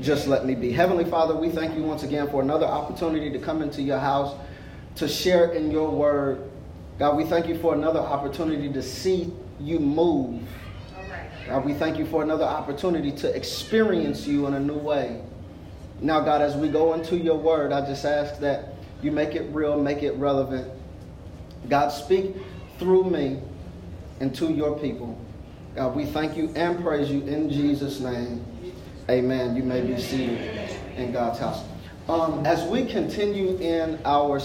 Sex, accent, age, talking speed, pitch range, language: male, American, 30-49, 175 wpm, 125-155 Hz, English